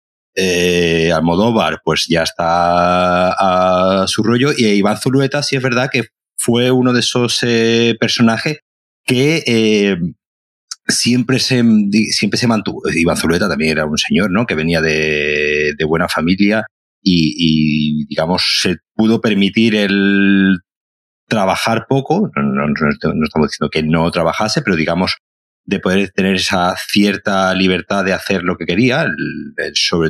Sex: male